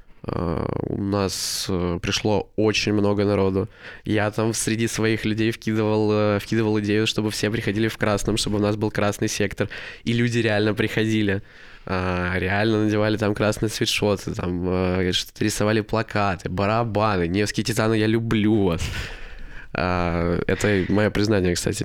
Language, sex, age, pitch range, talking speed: Russian, male, 20-39, 90-110 Hz, 145 wpm